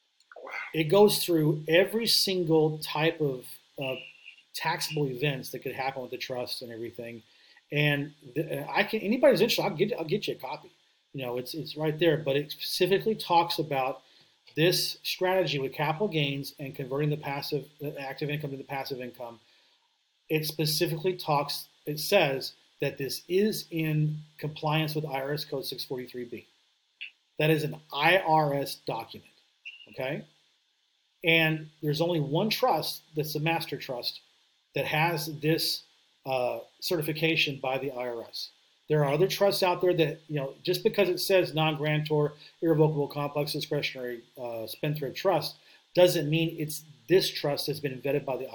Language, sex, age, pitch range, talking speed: English, male, 40-59, 140-165 Hz, 155 wpm